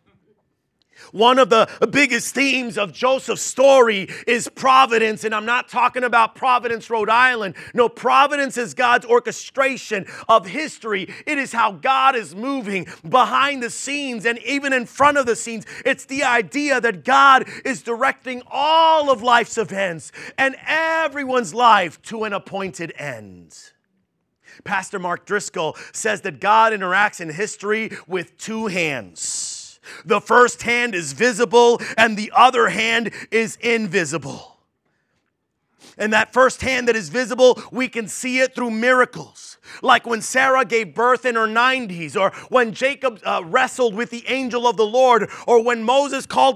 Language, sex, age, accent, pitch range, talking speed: English, male, 30-49, American, 215-265 Hz, 150 wpm